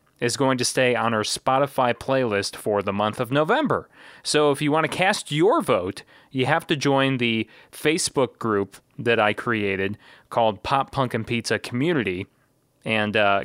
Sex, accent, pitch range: male, American, 110-135 Hz